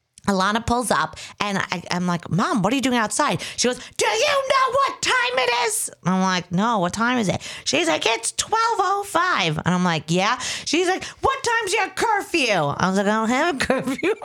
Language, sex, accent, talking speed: English, female, American, 210 wpm